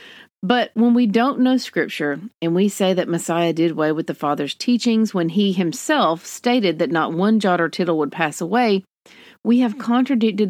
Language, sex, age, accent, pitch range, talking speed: English, female, 40-59, American, 170-225 Hz, 190 wpm